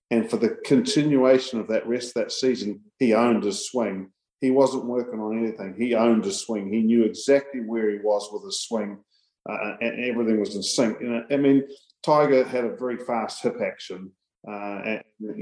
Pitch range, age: 105-120 Hz, 40-59